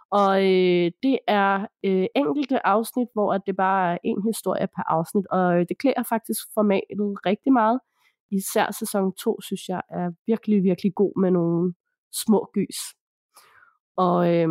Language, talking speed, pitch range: Danish, 155 wpm, 185-230 Hz